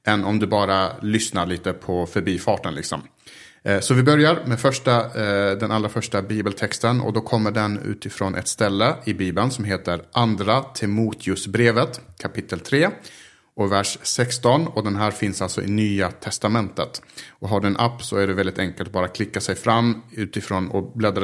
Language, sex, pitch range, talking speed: Swedish, male, 100-125 Hz, 175 wpm